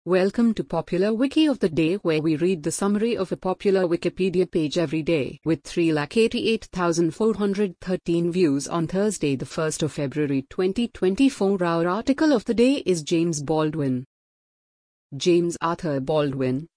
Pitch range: 155-190 Hz